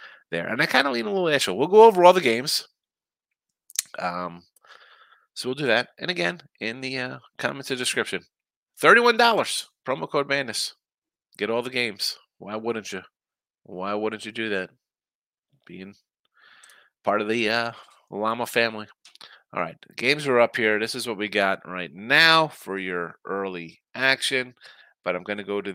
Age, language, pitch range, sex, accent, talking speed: 30-49, English, 105-160 Hz, male, American, 170 wpm